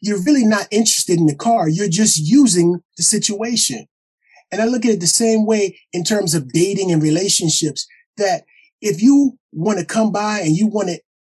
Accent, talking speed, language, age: American, 185 wpm, English, 30-49